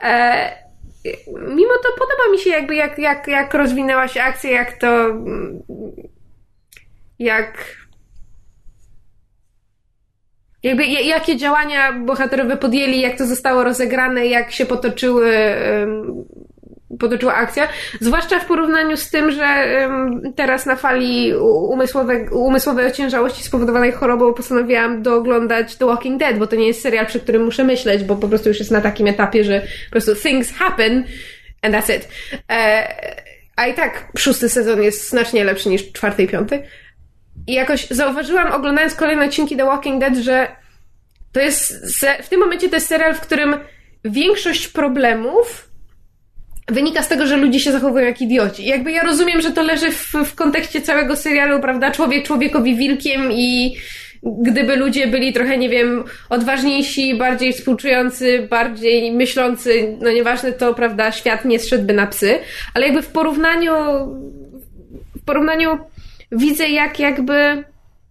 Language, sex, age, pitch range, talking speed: Polish, female, 20-39, 235-290 Hz, 145 wpm